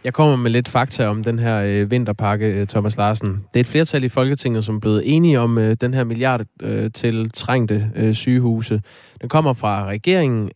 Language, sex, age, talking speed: Danish, male, 20-39, 205 wpm